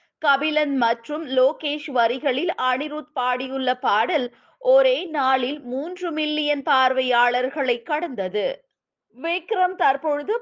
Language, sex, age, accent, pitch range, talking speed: Tamil, female, 20-39, native, 255-320 Hz, 85 wpm